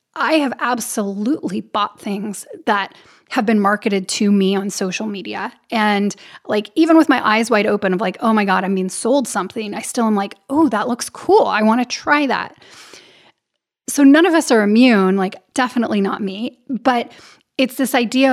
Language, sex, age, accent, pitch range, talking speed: English, female, 10-29, American, 205-250 Hz, 185 wpm